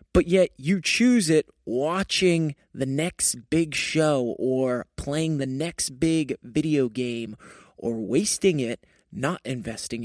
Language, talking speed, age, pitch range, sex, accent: English, 130 wpm, 20-39, 125-170 Hz, male, American